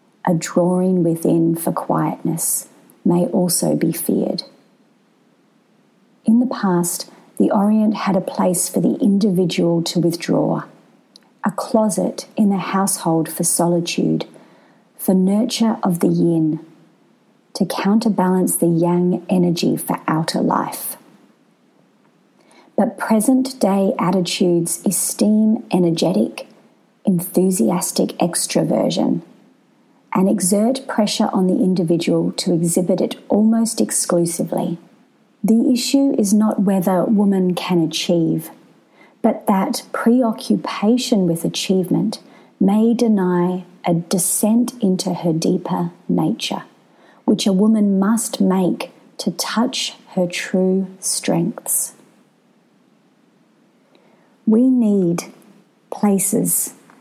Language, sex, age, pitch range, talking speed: English, female, 40-59, 175-225 Hz, 100 wpm